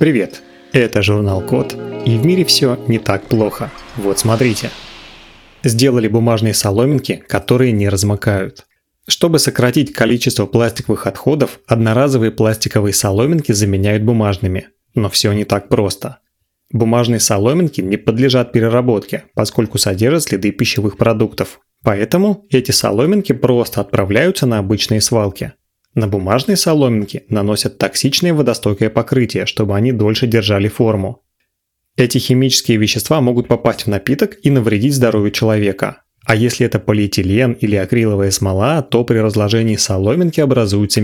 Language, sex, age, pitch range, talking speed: Russian, male, 30-49, 105-130 Hz, 125 wpm